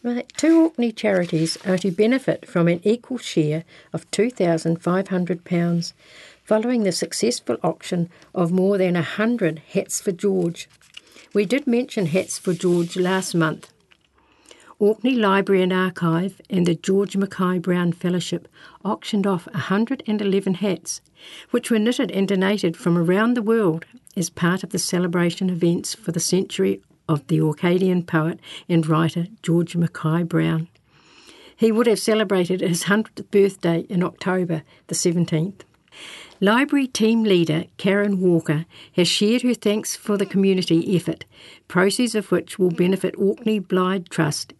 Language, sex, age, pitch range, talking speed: English, female, 60-79, 170-205 Hz, 140 wpm